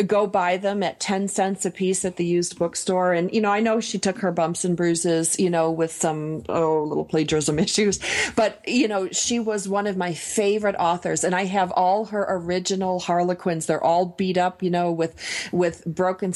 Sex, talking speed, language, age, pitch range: female, 210 wpm, English, 40-59, 170-190 Hz